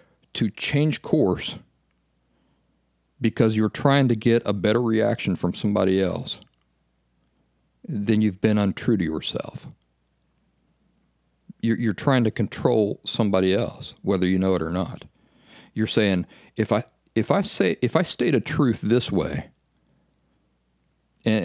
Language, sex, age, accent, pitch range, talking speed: English, male, 50-69, American, 85-115 Hz, 135 wpm